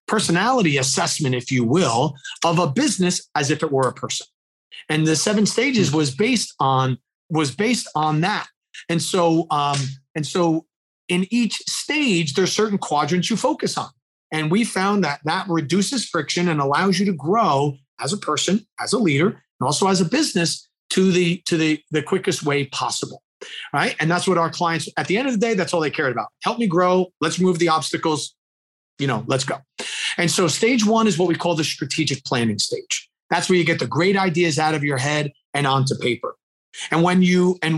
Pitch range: 150-190 Hz